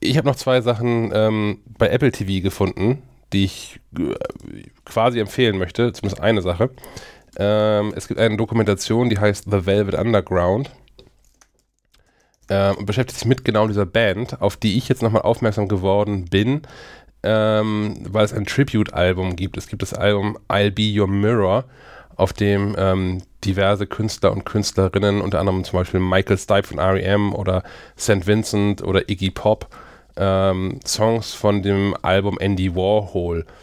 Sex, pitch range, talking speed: male, 95-115 Hz, 155 wpm